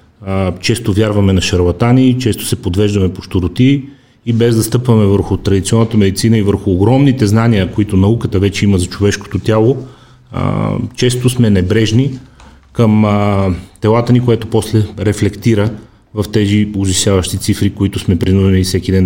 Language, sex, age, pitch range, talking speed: Bulgarian, male, 30-49, 100-115 Hz, 140 wpm